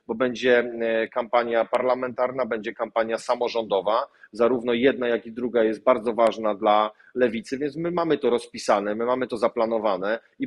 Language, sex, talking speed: Polish, male, 155 wpm